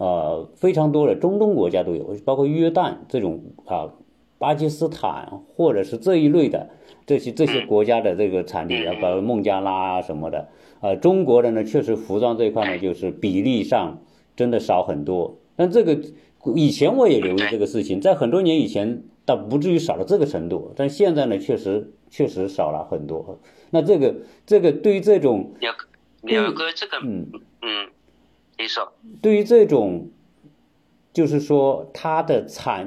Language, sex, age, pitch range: Chinese, male, 50-69, 120-185 Hz